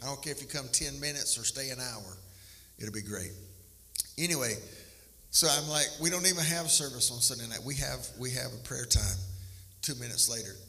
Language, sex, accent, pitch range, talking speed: English, male, American, 105-140 Hz, 210 wpm